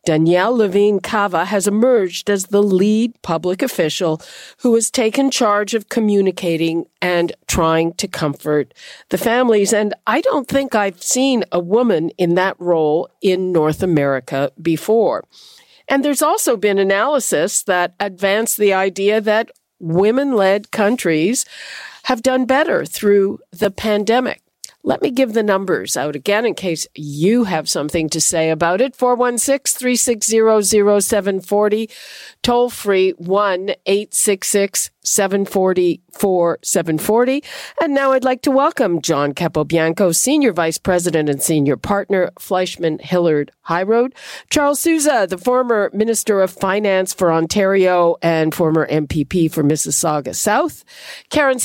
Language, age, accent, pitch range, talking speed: English, 50-69, American, 170-230 Hz, 130 wpm